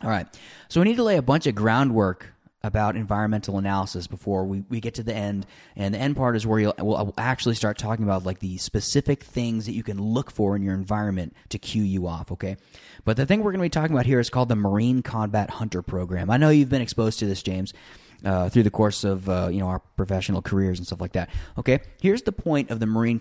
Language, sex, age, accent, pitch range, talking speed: English, male, 20-39, American, 100-130 Hz, 250 wpm